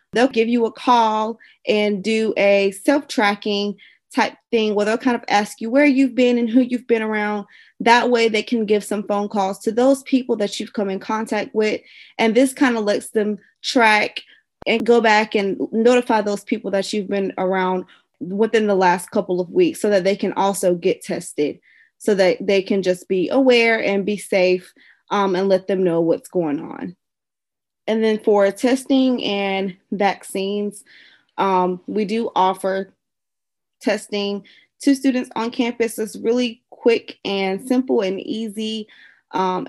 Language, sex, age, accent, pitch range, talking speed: English, female, 20-39, American, 200-240 Hz, 170 wpm